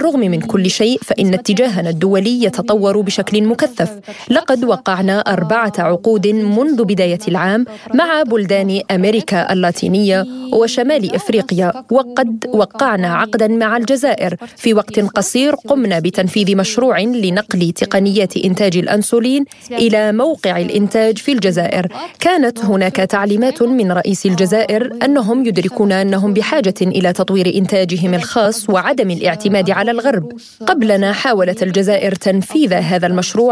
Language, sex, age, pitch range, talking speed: Arabic, female, 30-49, 190-235 Hz, 120 wpm